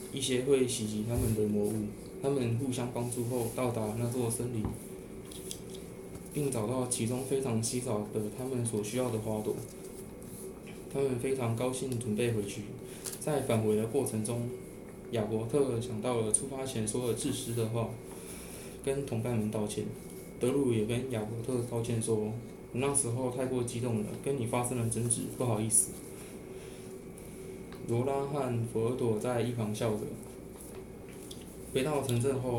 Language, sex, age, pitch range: Chinese, male, 20-39, 110-130 Hz